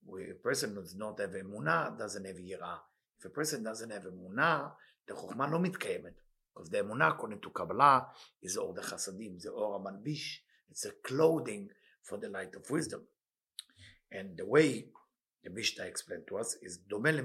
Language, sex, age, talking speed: English, male, 50-69, 180 wpm